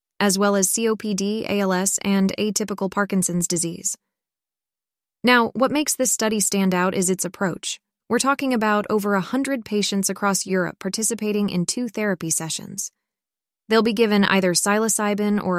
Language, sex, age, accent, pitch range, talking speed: English, female, 20-39, American, 185-215 Hz, 145 wpm